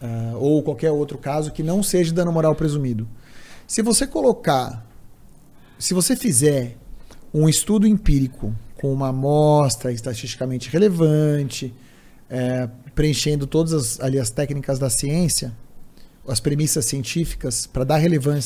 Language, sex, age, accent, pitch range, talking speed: Portuguese, male, 40-59, Brazilian, 135-185 Hz, 120 wpm